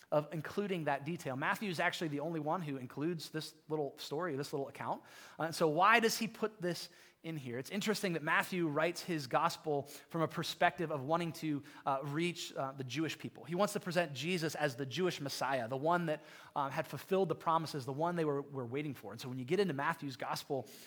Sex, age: male, 30-49